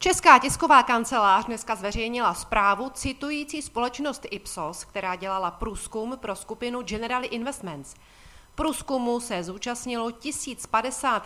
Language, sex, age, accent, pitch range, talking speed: Czech, female, 40-59, native, 195-255 Hz, 105 wpm